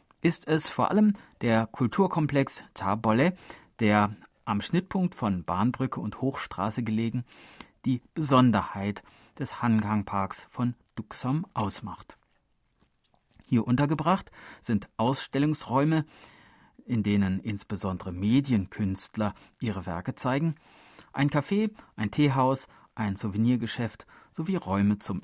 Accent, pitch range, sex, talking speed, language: German, 105-150 Hz, male, 100 wpm, German